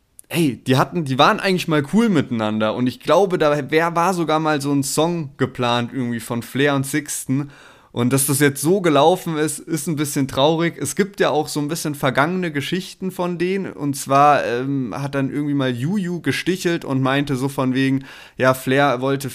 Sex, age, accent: male, 20-39, German